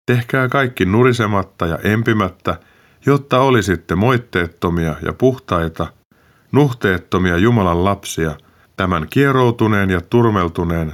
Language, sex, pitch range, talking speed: Finnish, male, 85-120 Hz, 95 wpm